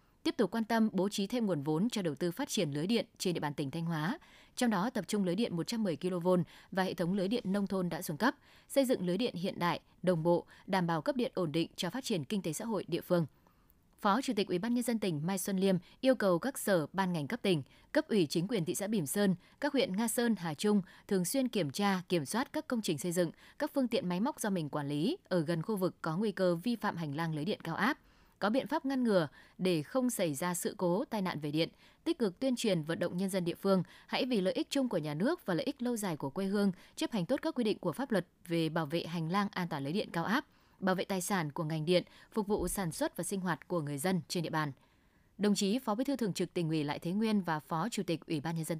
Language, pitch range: Vietnamese, 170-225 Hz